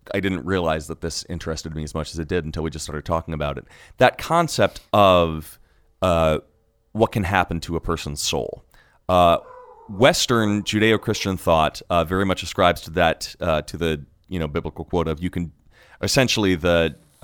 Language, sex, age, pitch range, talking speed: English, male, 30-49, 80-110 Hz, 185 wpm